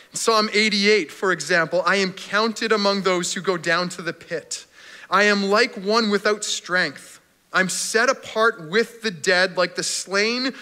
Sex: male